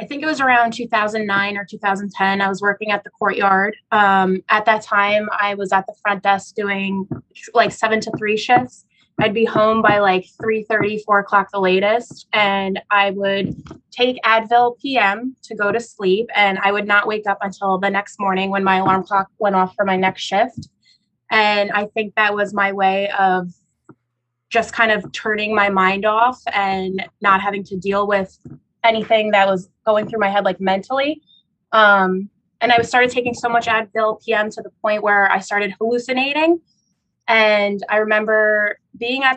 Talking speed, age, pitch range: 185 wpm, 20-39, 195-220 Hz